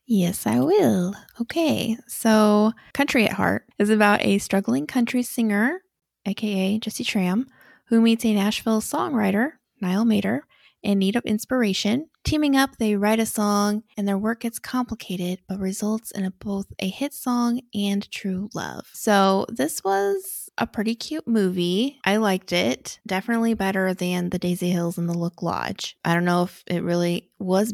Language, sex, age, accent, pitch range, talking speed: English, female, 20-39, American, 185-240 Hz, 165 wpm